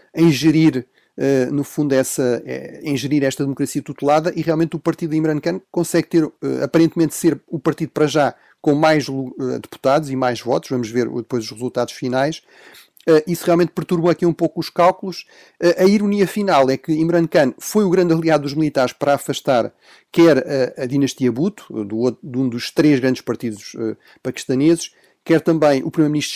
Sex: male